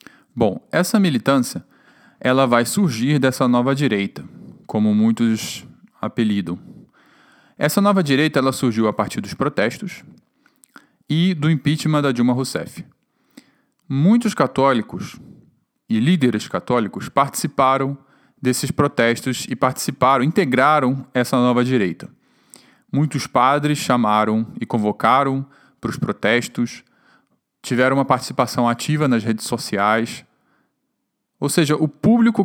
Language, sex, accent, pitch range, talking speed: Portuguese, male, Brazilian, 120-165 Hz, 105 wpm